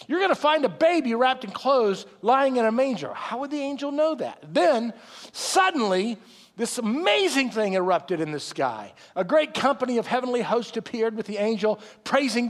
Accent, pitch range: American, 215-300 Hz